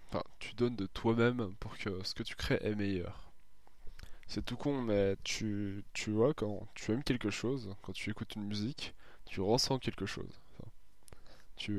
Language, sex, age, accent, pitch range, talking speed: French, male, 20-39, French, 100-120 Hz, 185 wpm